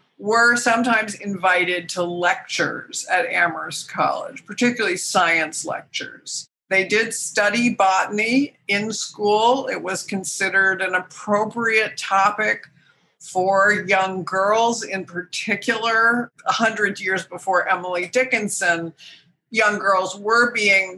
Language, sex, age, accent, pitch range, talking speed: English, female, 50-69, American, 175-215 Hz, 110 wpm